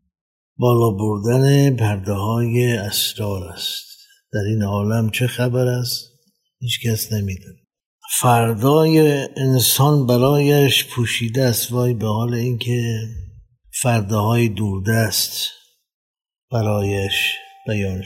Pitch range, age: 110-150 Hz, 60-79